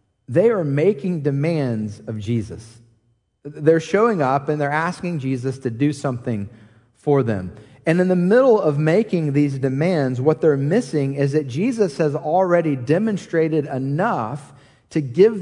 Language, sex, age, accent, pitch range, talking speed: English, male, 40-59, American, 150-205 Hz, 150 wpm